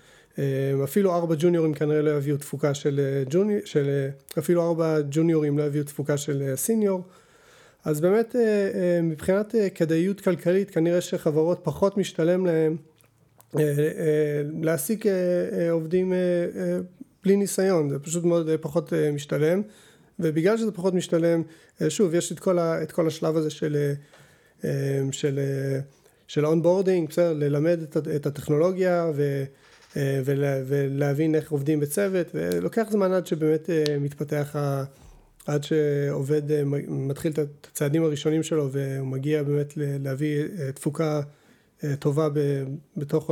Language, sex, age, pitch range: Hebrew, male, 30-49, 145-180 Hz